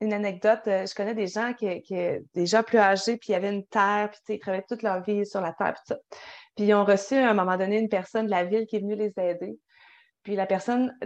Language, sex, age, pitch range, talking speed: French, female, 30-49, 205-260 Hz, 260 wpm